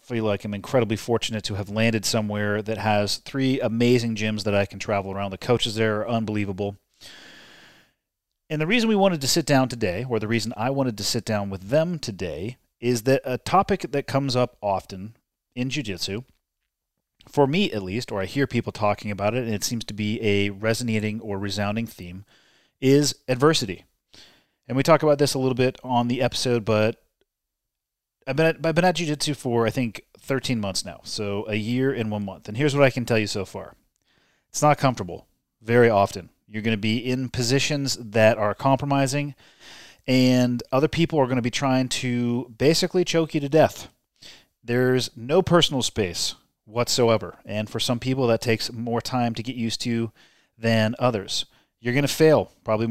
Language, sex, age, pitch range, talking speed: English, male, 30-49, 105-135 Hz, 190 wpm